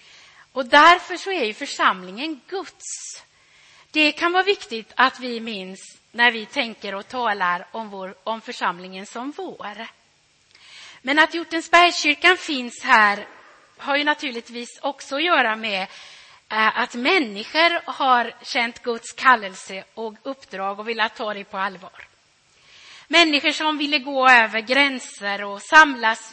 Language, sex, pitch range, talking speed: Swedish, female, 205-295 Hz, 135 wpm